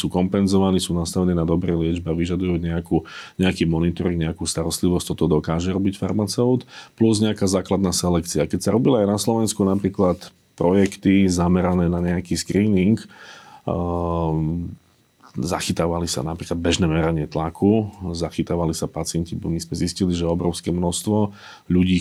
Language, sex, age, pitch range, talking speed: Slovak, male, 40-59, 85-100 Hz, 135 wpm